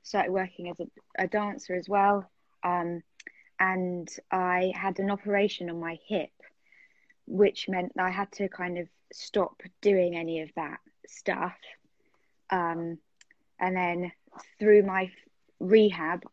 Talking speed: 130 wpm